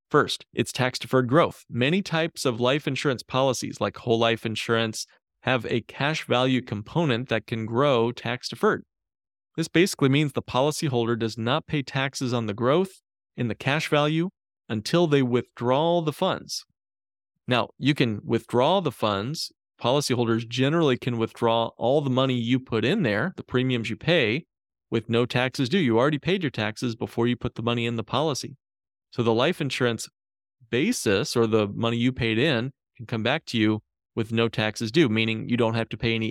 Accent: American